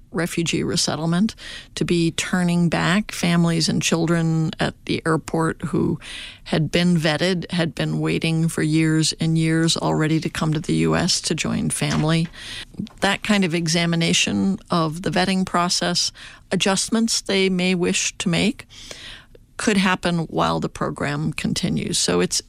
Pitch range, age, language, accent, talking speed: 160-190 Hz, 50-69, English, American, 145 wpm